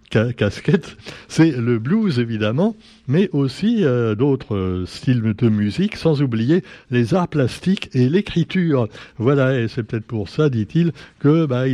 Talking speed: 150 wpm